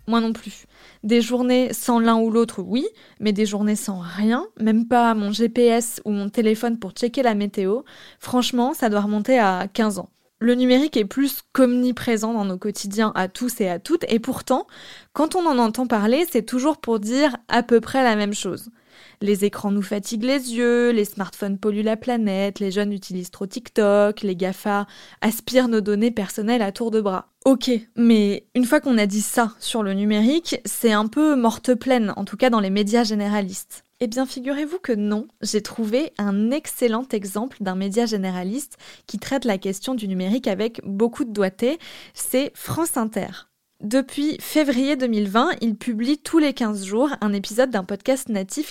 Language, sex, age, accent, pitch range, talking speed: French, female, 20-39, French, 205-250 Hz, 185 wpm